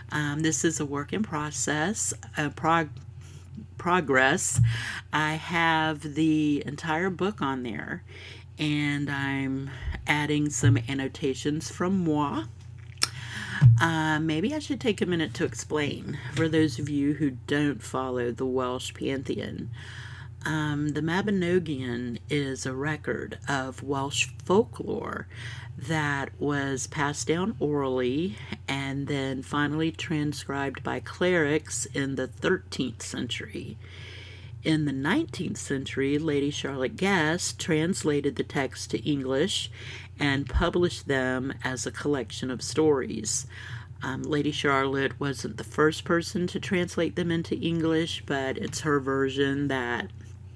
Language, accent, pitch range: English, American, 120-155 Hz